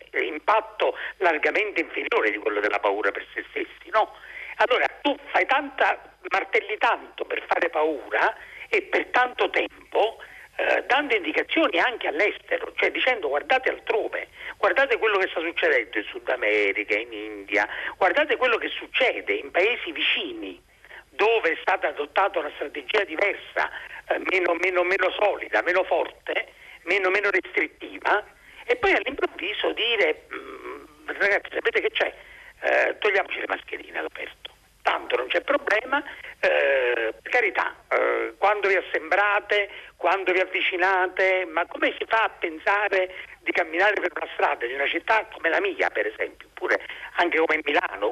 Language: Italian